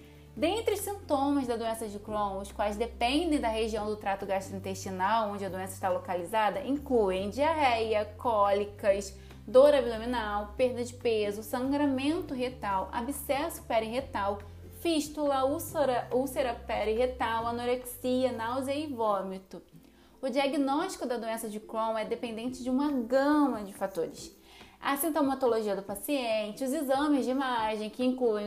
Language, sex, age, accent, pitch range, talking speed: Portuguese, female, 20-39, Brazilian, 210-275 Hz, 135 wpm